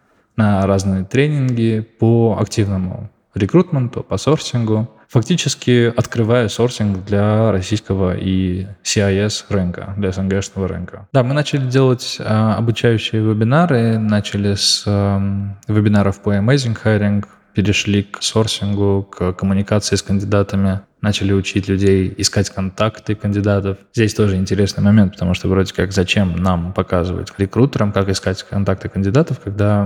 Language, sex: Russian, male